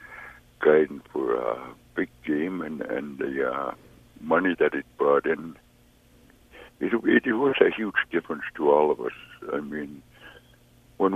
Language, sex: English, male